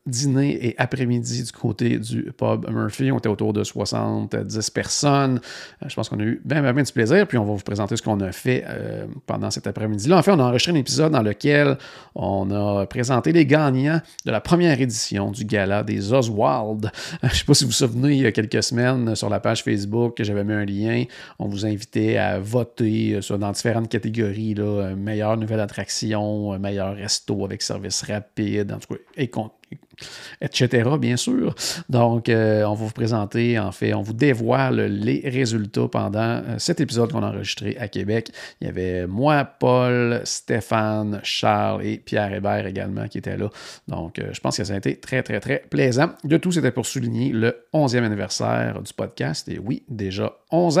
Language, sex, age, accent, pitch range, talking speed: French, male, 40-59, Canadian, 105-130 Hz, 195 wpm